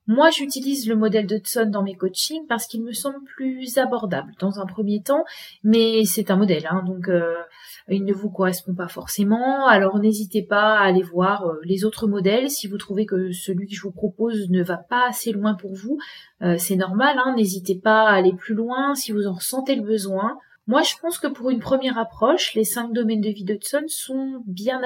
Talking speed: 215 wpm